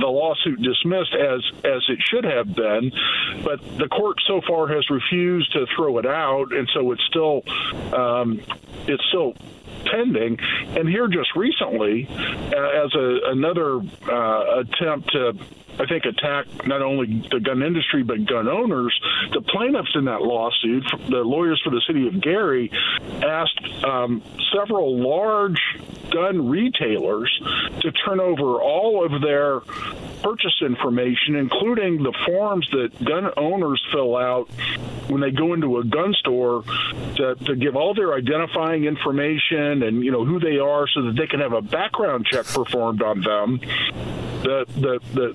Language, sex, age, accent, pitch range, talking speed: English, male, 50-69, American, 120-160 Hz, 155 wpm